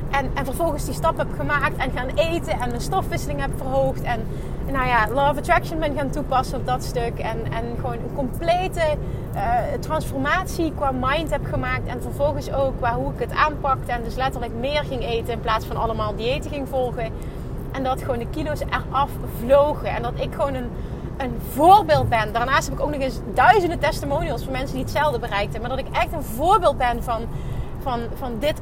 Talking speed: 205 wpm